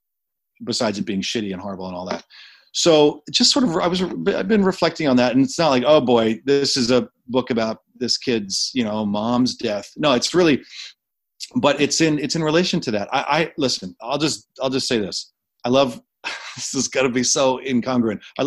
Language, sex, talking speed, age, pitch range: English, male, 220 wpm, 40-59, 110-135 Hz